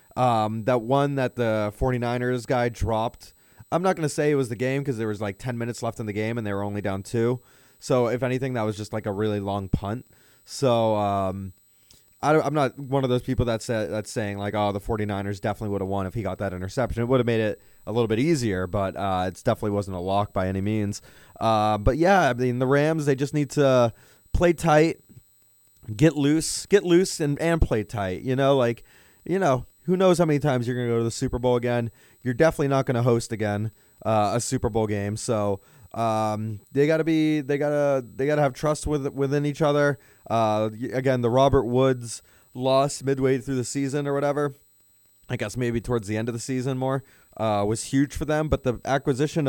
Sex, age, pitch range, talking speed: male, 30-49, 110-140 Hz, 225 wpm